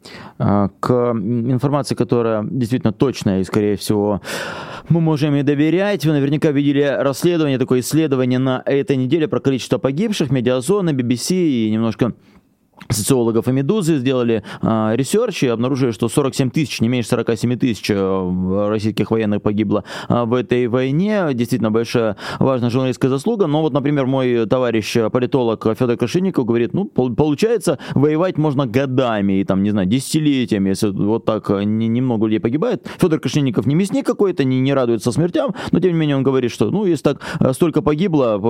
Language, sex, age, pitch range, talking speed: Russian, male, 20-39, 115-145 Hz, 155 wpm